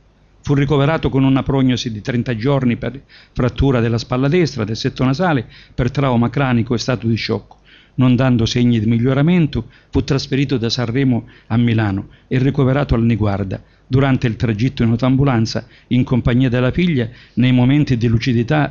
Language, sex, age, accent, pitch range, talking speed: Italian, male, 50-69, native, 115-135 Hz, 165 wpm